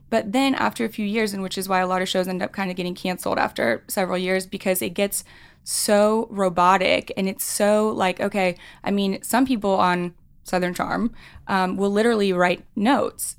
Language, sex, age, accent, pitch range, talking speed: English, female, 10-29, American, 180-205 Hz, 200 wpm